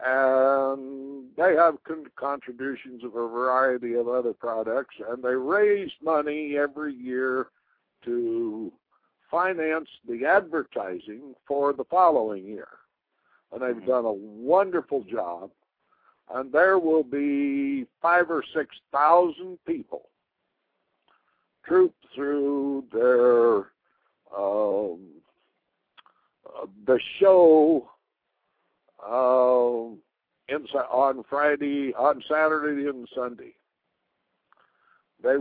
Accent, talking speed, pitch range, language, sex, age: American, 90 wpm, 125-155 Hz, English, male, 60-79